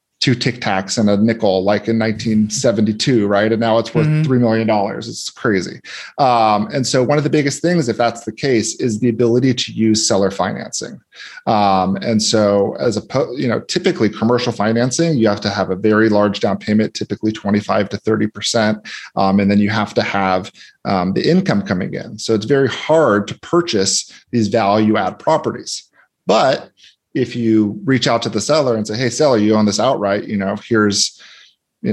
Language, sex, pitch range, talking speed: English, male, 105-115 Hz, 190 wpm